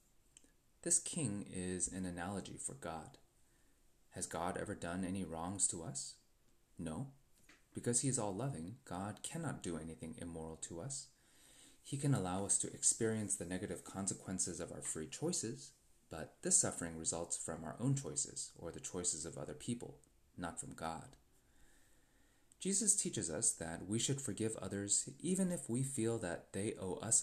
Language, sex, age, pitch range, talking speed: English, male, 30-49, 90-115 Hz, 160 wpm